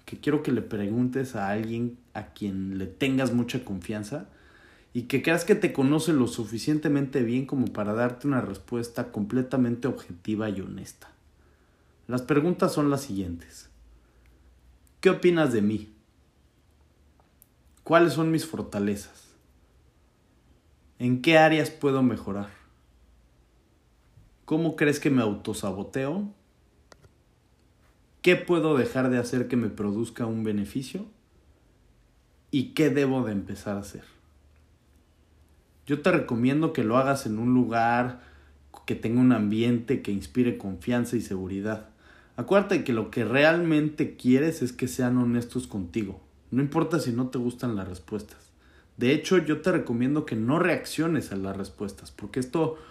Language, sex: Spanish, male